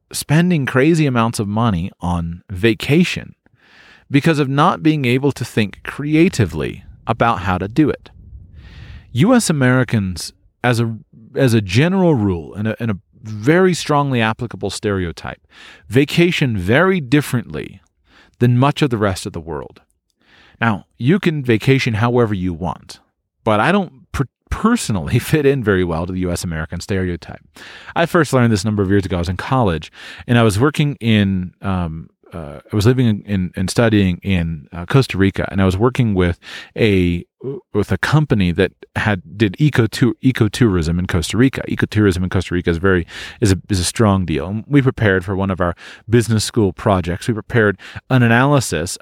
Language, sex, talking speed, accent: English, male, 170 wpm, American